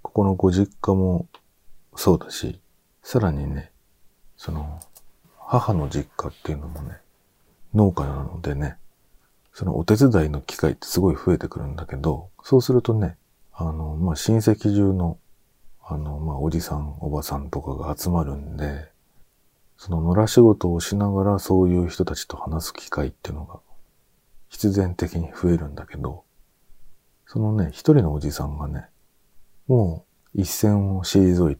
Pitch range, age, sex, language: 75-95 Hz, 40-59, male, Japanese